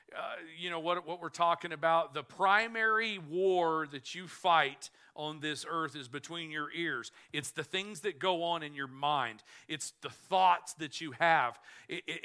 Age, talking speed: 40-59, 175 wpm